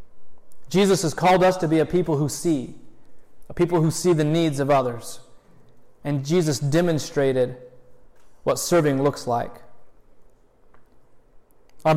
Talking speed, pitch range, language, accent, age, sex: 130 wpm, 150-180 Hz, English, American, 30-49, male